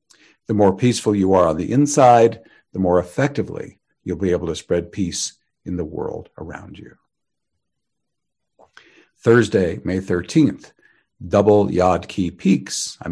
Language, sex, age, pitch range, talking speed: English, male, 50-69, 85-105 Hz, 135 wpm